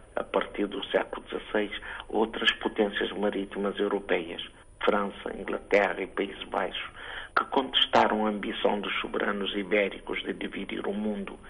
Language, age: Portuguese, 50-69